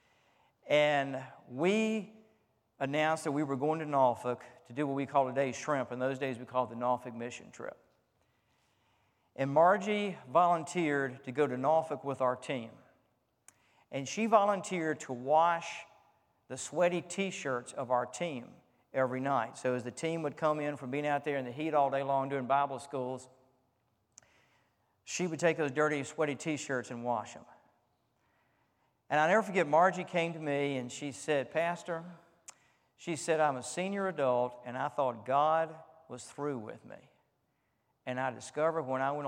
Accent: American